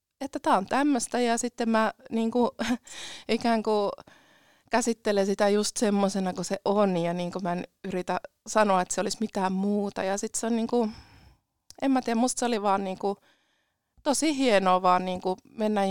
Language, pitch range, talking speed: Finnish, 195-230 Hz, 190 wpm